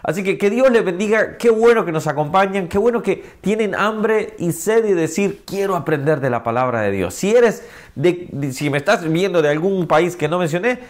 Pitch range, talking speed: 130-180 Hz, 210 wpm